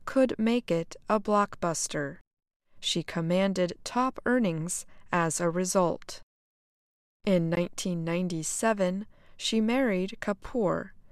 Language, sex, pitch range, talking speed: English, female, 175-225 Hz, 90 wpm